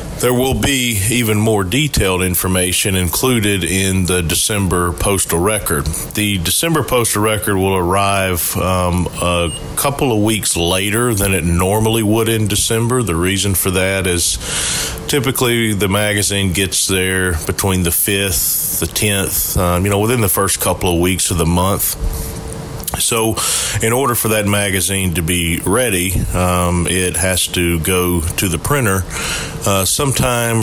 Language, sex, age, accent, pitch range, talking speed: English, male, 40-59, American, 85-105 Hz, 150 wpm